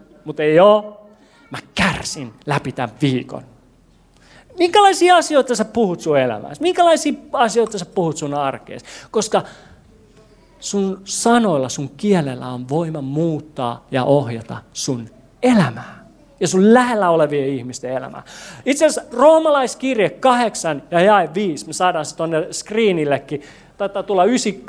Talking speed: 125 wpm